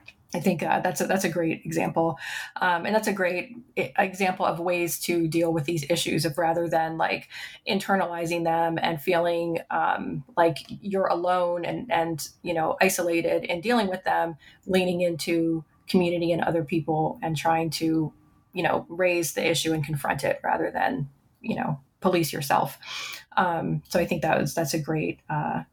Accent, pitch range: American, 165-195 Hz